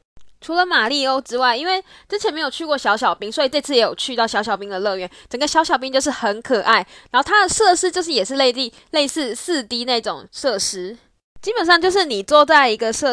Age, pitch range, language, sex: 10-29, 225-315 Hz, Chinese, female